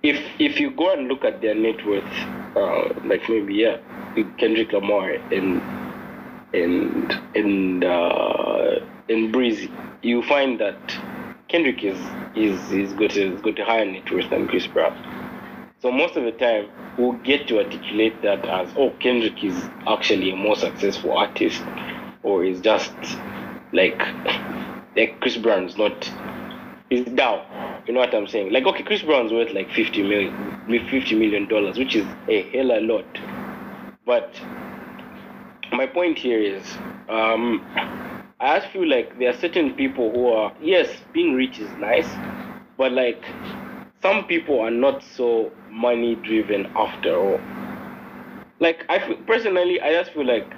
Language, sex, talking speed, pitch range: English, male, 155 wpm, 110-175 Hz